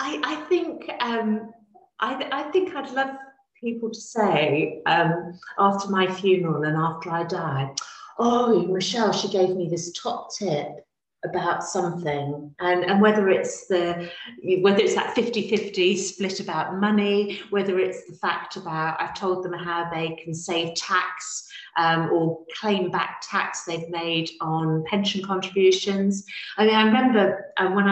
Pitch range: 165-205 Hz